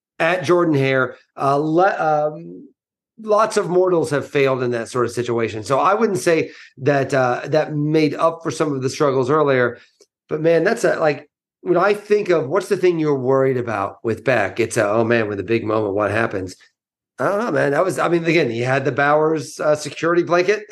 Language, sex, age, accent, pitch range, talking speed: English, male, 40-59, American, 130-175 Hz, 200 wpm